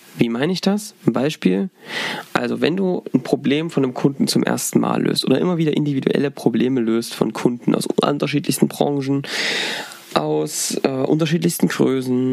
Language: German